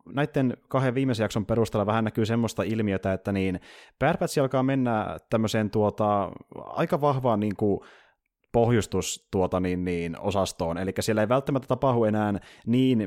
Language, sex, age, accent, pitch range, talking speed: Finnish, male, 30-49, native, 95-120 Hz, 140 wpm